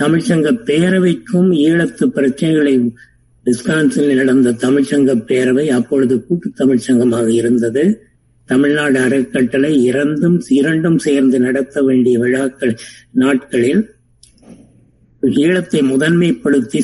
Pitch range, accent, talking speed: 125-150 Hz, native, 80 wpm